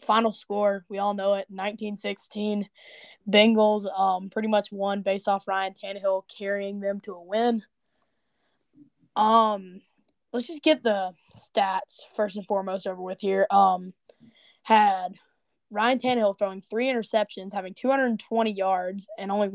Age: 10-29